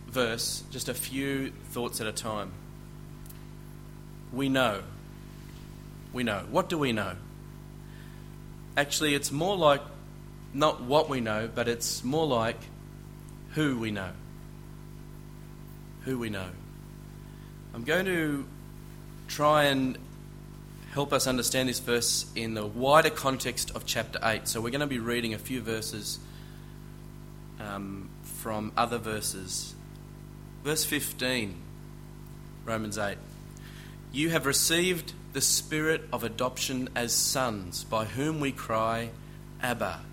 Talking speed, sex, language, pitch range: 125 wpm, male, English, 115-150 Hz